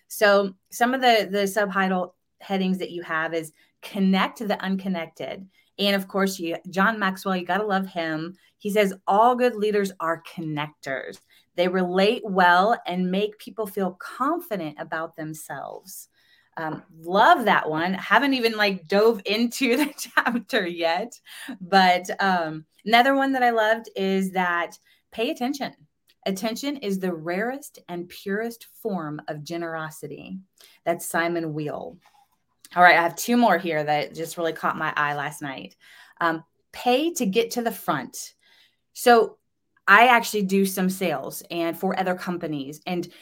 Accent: American